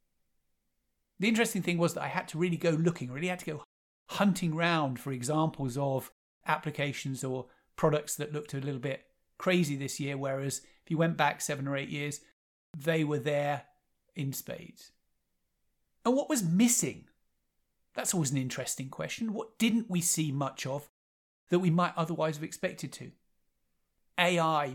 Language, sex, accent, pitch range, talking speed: English, male, British, 140-170 Hz, 165 wpm